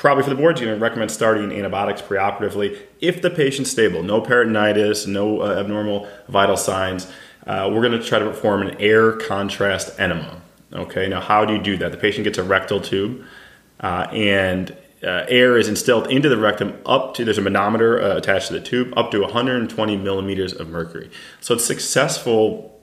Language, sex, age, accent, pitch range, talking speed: English, male, 30-49, American, 95-115 Hz, 195 wpm